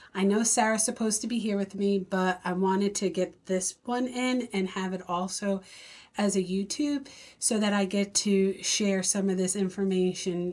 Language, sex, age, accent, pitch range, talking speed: English, female, 30-49, American, 185-230 Hz, 195 wpm